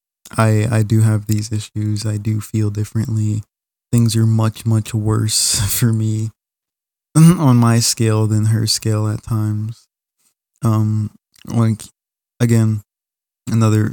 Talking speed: 125 wpm